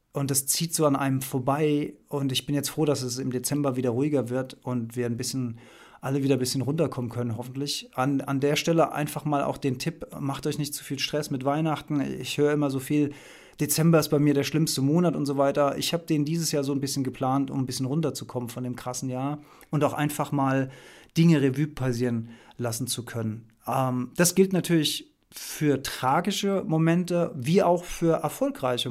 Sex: male